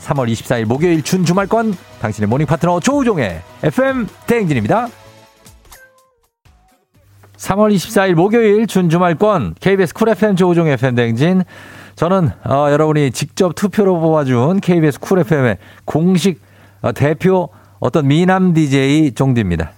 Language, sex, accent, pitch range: Korean, male, native, 100-150 Hz